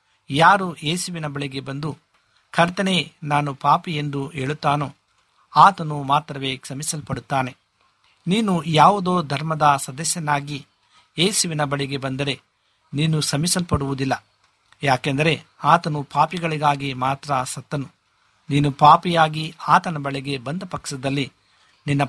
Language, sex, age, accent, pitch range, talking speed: Kannada, male, 50-69, native, 140-160 Hz, 90 wpm